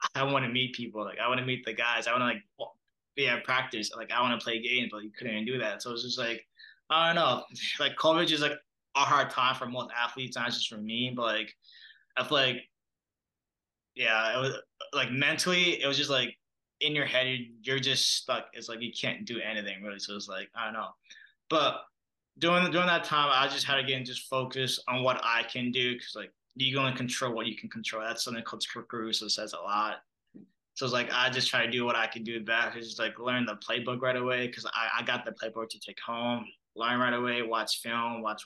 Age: 20-39